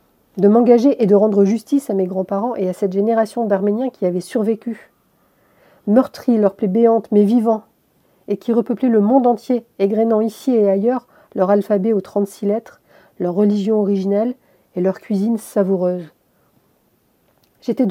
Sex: female